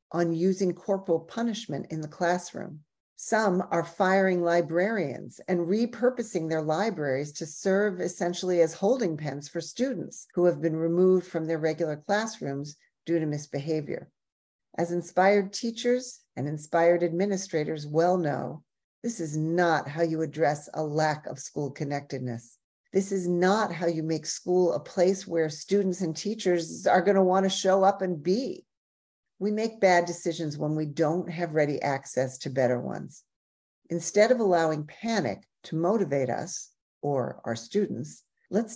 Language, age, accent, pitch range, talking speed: English, 50-69, American, 155-195 Hz, 150 wpm